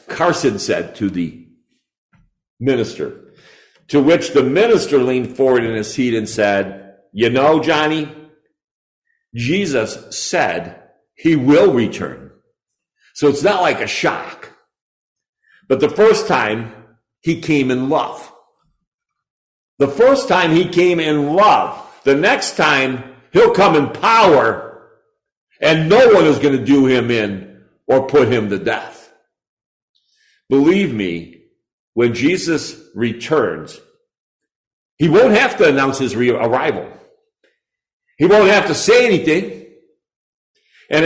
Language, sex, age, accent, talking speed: English, male, 50-69, American, 125 wpm